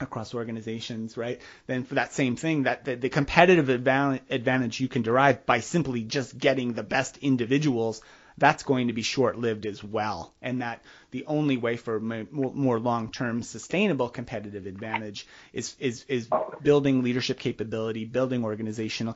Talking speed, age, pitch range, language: 150 wpm, 30-49, 115-140 Hz, English